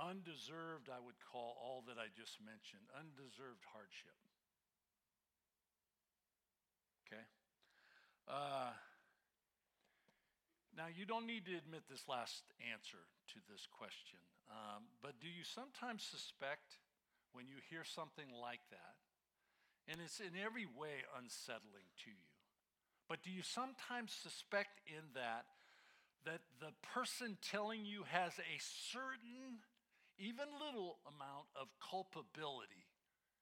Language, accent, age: English, American, 60-79